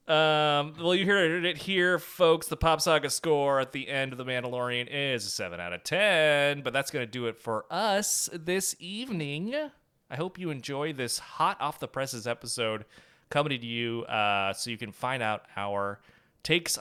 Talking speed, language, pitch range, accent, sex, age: 195 wpm, English, 110-155 Hz, American, male, 30-49